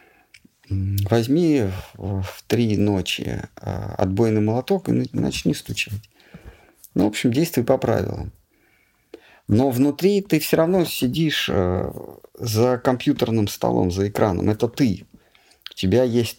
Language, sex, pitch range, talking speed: Russian, male, 95-120 Hz, 115 wpm